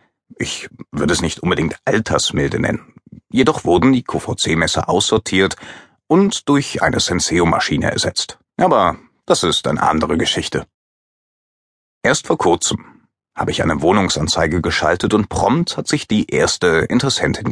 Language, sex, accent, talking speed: German, male, German, 135 wpm